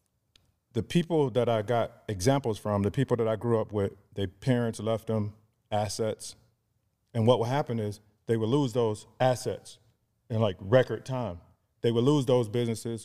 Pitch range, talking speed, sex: 105-125 Hz, 175 wpm, male